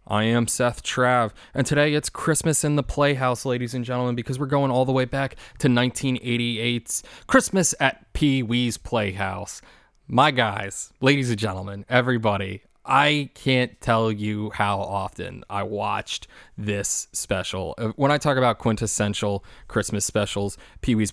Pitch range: 100-130 Hz